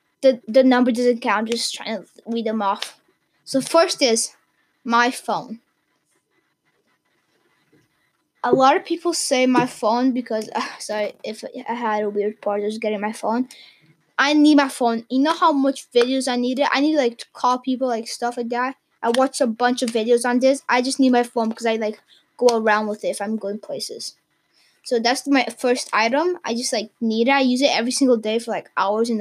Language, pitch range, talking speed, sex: English, 220-265 Hz, 215 wpm, female